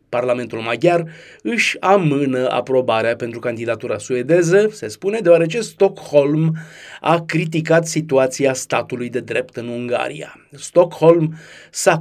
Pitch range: 125-160 Hz